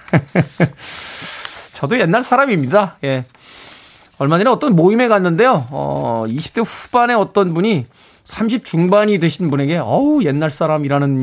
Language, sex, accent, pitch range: Korean, male, native, 135-185 Hz